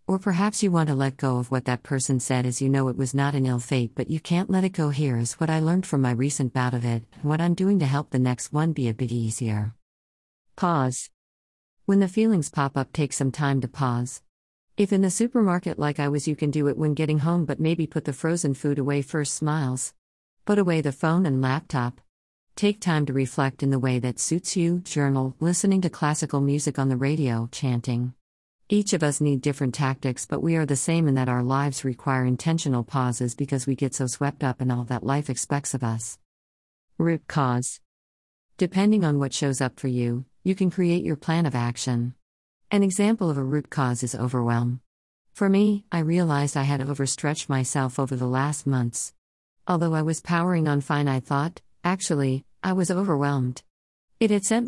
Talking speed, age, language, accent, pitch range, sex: 210 wpm, 50-69, English, American, 125-160 Hz, female